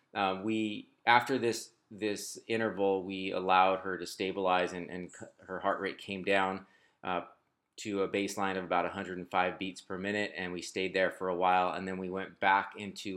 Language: English